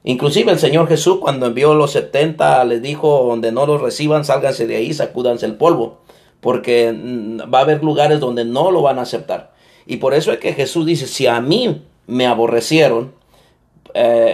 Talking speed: 185 wpm